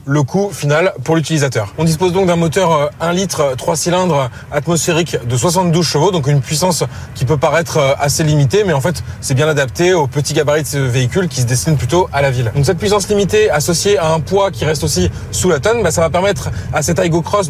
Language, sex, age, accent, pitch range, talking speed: French, male, 20-39, French, 140-170 Hz, 230 wpm